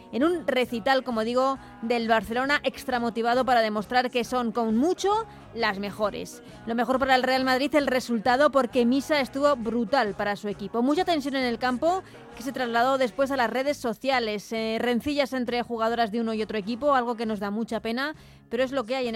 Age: 20-39